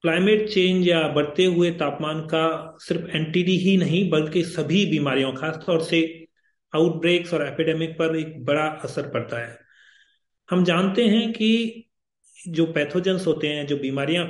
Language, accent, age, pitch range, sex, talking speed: Hindi, native, 40-59, 145-175 Hz, male, 145 wpm